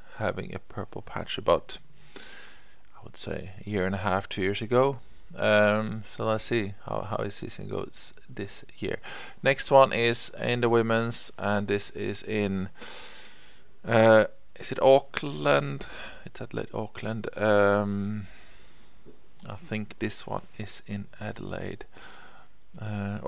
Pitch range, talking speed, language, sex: 95-110 Hz, 140 wpm, English, male